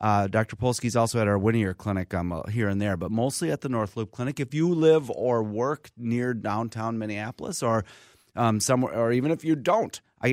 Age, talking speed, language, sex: 30-49, 215 wpm, English, male